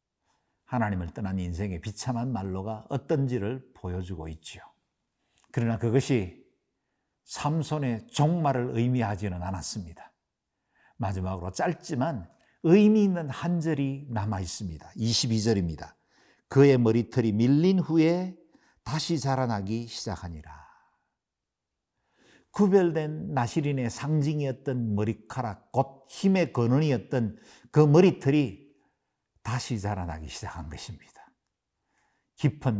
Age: 50-69